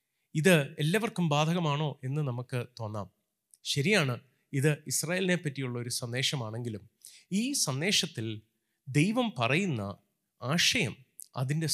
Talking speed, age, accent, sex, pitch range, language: 90 wpm, 30-49, native, male, 125-165 Hz, Malayalam